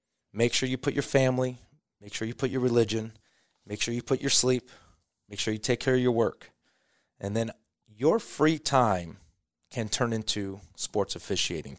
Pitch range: 110-145 Hz